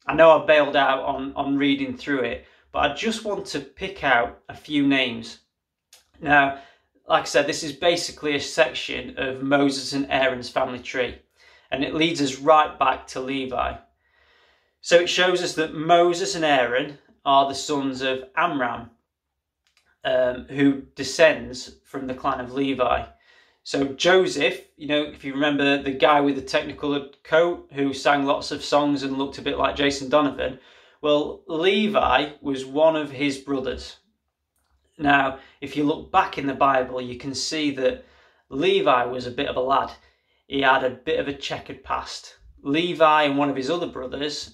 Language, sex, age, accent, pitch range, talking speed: English, male, 30-49, British, 130-155 Hz, 175 wpm